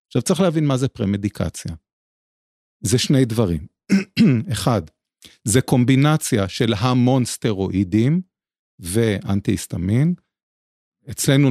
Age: 40-59